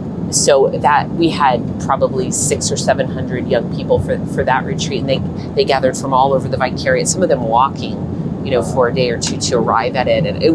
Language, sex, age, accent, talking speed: English, female, 30-49, American, 230 wpm